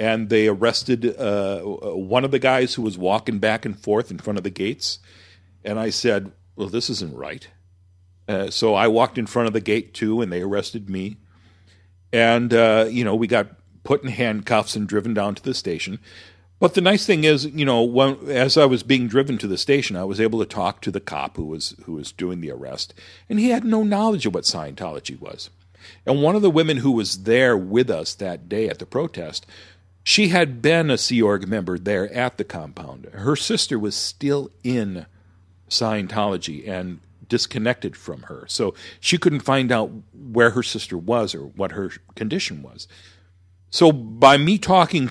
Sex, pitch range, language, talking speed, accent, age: male, 95-125 Hz, English, 200 wpm, American, 50-69